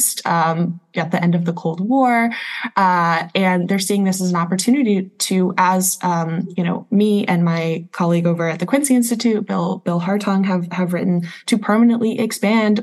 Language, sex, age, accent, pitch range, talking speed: English, female, 20-39, American, 165-195 Hz, 185 wpm